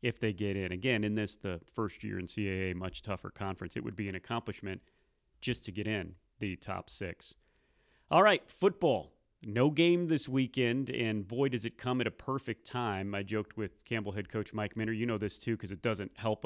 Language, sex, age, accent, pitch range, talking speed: English, male, 30-49, American, 100-120 Hz, 215 wpm